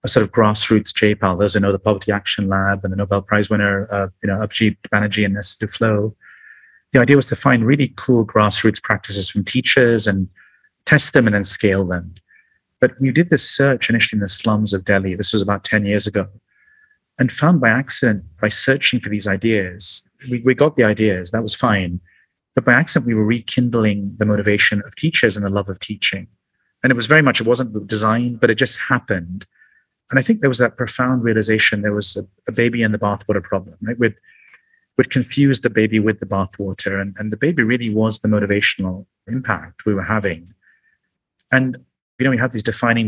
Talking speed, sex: 210 wpm, male